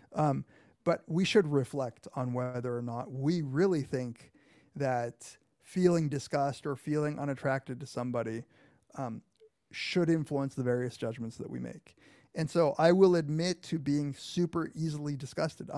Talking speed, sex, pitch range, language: 150 wpm, male, 135-165 Hz, English